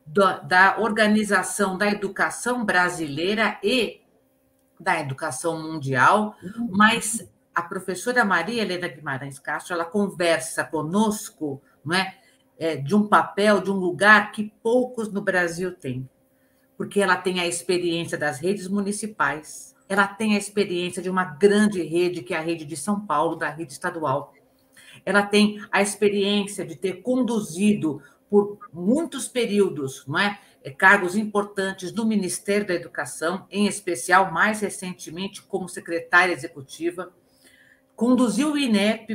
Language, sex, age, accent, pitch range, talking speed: Portuguese, female, 50-69, Brazilian, 165-205 Hz, 135 wpm